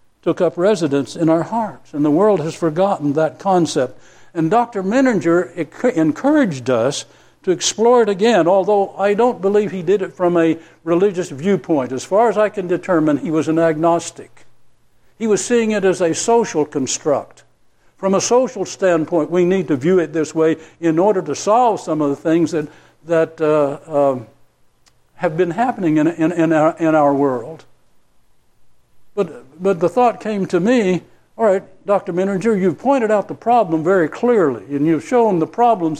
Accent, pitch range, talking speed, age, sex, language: American, 155-210 Hz, 180 wpm, 60-79, male, English